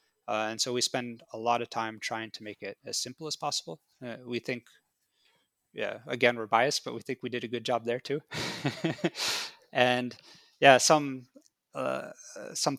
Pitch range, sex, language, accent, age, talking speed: 110-130 Hz, male, English, American, 20-39, 185 wpm